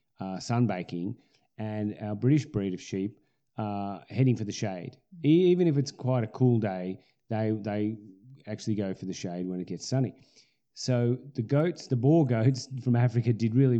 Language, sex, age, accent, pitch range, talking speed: English, male, 30-49, Australian, 95-130 Hz, 185 wpm